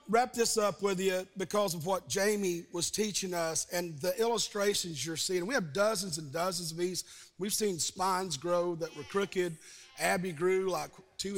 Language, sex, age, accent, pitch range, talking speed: English, male, 40-59, American, 180-235 Hz, 185 wpm